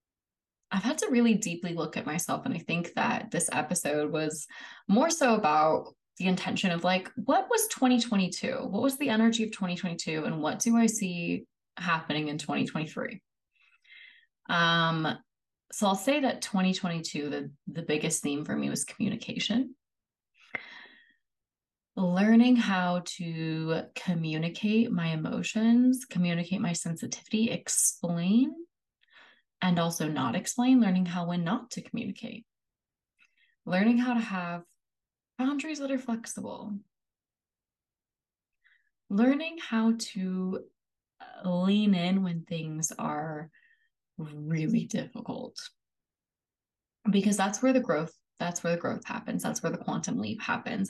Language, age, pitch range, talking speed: English, 20-39, 170-235 Hz, 125 wpm